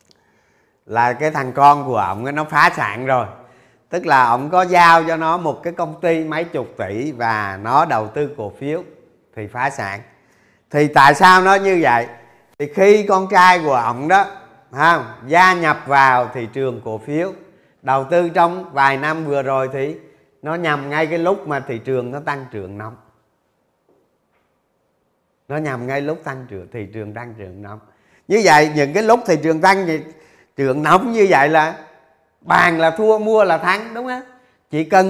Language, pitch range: Vietnamese, 130-185 Hz